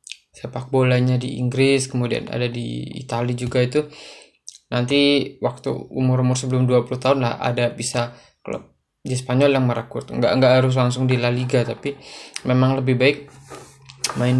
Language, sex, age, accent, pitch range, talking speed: Indonesian, male, 20-39, native, 120-135 Hz, 145 wpm